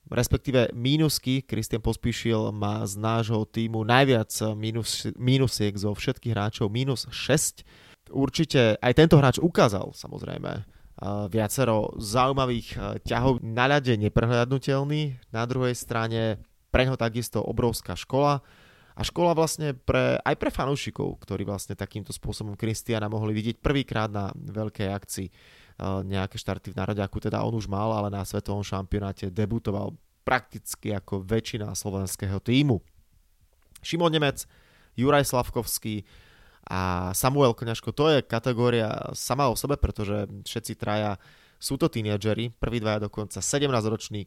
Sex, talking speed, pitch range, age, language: male, 130 wpm, 105-130 Hz, 20-39, Slovak